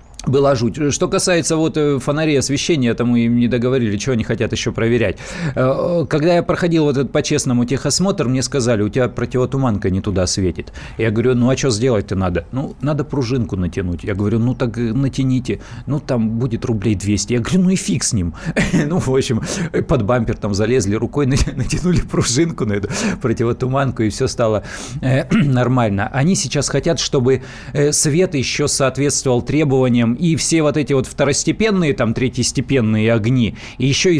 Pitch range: 120-150 Hz